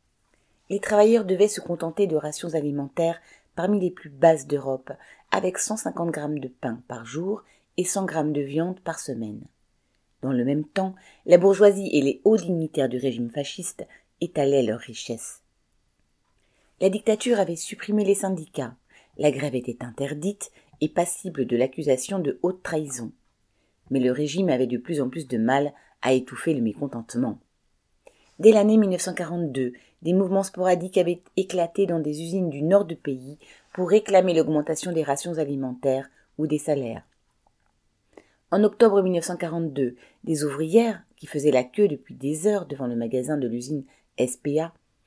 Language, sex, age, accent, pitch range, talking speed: French, female, 40-59, French, 130-180 Hz, 155 wpm